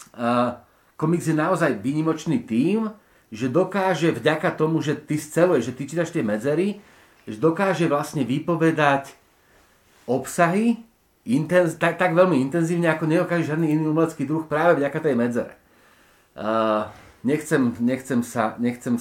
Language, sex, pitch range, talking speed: Slovak, male, 125-165 Hz, 135 wpm